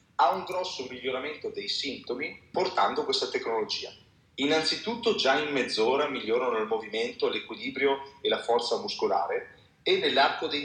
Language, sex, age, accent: Italian, male, 30-49, native